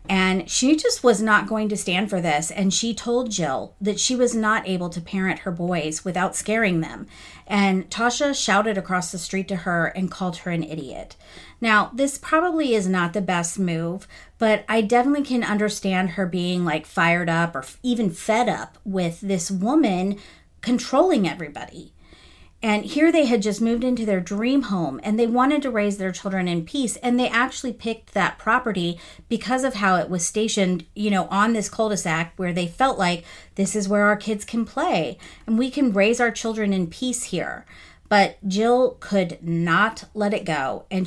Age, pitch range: 40-59, 180-240 Hz